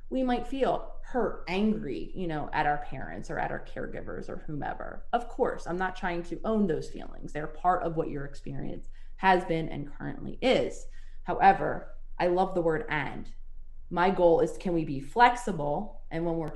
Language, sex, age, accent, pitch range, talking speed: English, female, 20-39, American, 145-185 Hz, 190 wpm